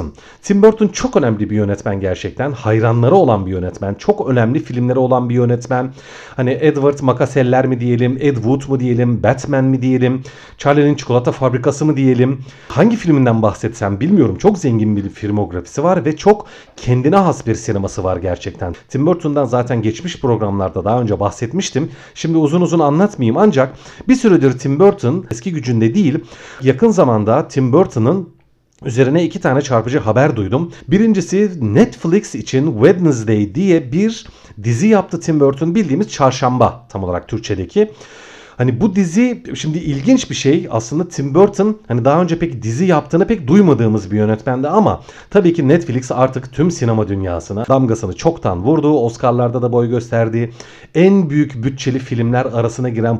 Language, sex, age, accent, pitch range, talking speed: Turkish, male, 40-59, native, 115-165 Hz, 155 wpm